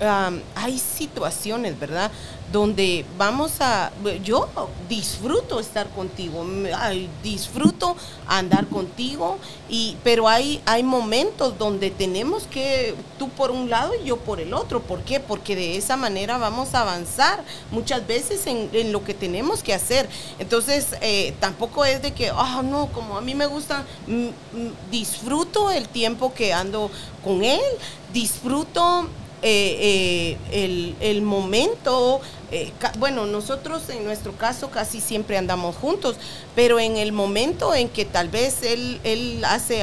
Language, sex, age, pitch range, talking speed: Spanish, female, 40-59, 200-260 Hz, 150 wpm